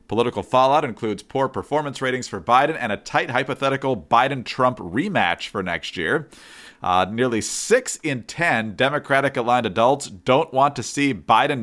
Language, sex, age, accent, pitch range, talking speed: English, male, 40-59, American, 100-130 Hz, 150 wpm